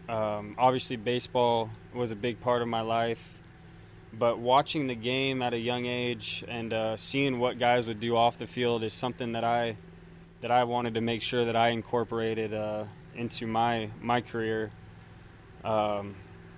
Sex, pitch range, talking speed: male, 110-120 Hz, 170 wpm